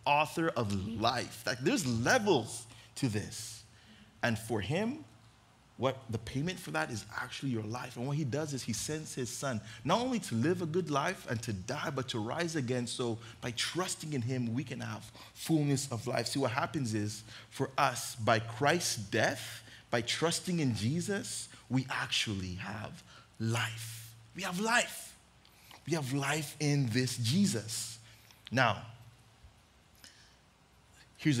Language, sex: English, male